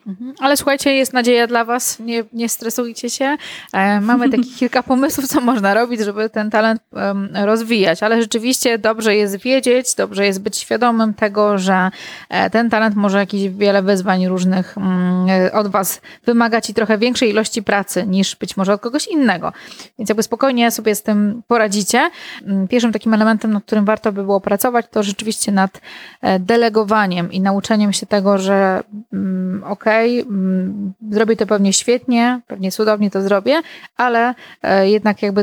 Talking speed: 150 wpm